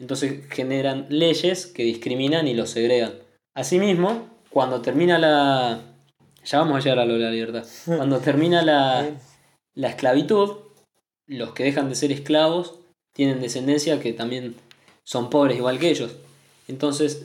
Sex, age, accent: male, 20-39, Argentinian